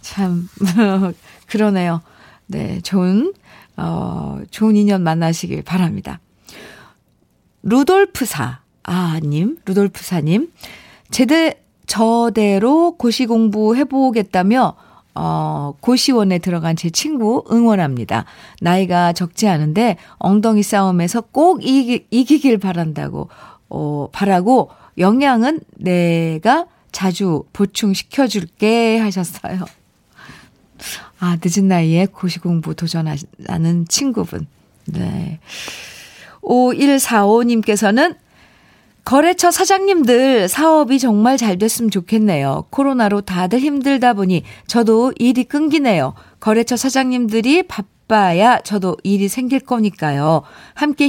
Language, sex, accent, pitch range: Korean, female, native, 175-245 Hz